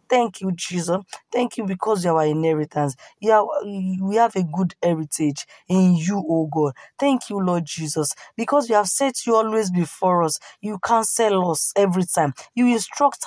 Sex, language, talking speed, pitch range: female, English, 175 wpm, 165-220 Hz